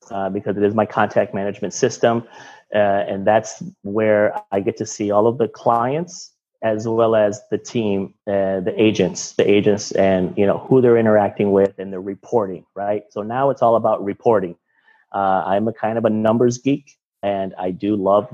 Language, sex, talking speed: English, male, 195 wpm